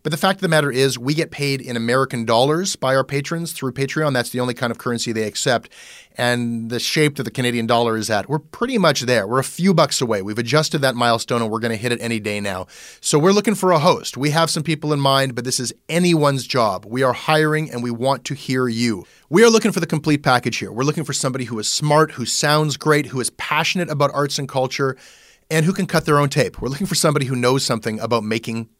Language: English